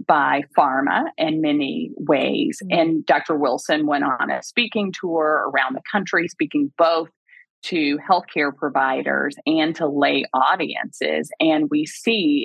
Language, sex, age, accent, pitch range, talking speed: English, female, 30-49, American, 150-250 Hz, 135 wpm